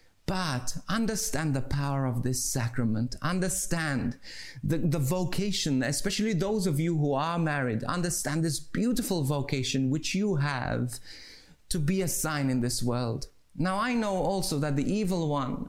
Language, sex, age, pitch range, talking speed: English, male, 30-49, 130-185 Hz, 155 wpm